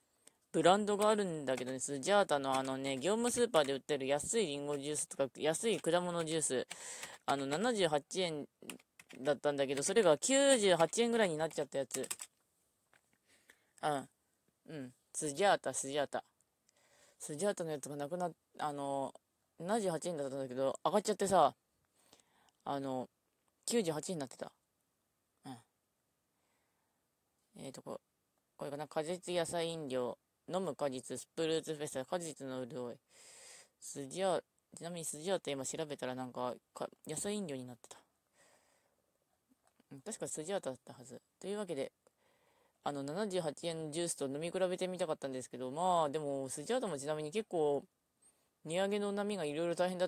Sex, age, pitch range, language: female, 20-39, 140-185 Hz, Japanese